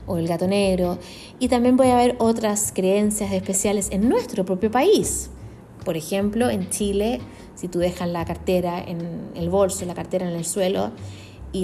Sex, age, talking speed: female, 20-39, 170 wpm